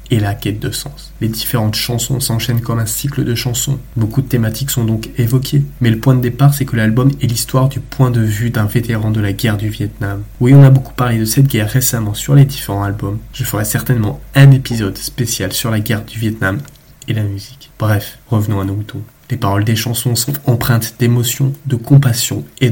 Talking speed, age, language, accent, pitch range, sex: 220 wpm, 20-39, French, French, 110-130 Hz, male